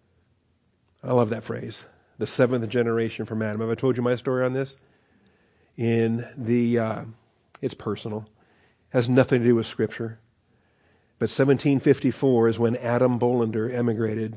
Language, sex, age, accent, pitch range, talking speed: English, male, 40-59, American, 110-125 Hz, 150 wpm